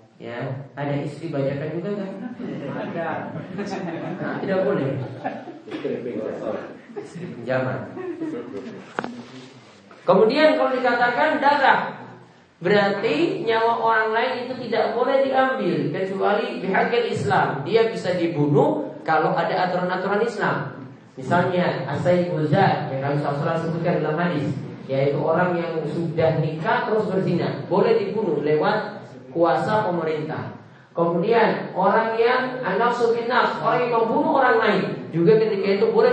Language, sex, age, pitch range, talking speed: Malay, male, 30-49, 150-225 Hz, 110 wpm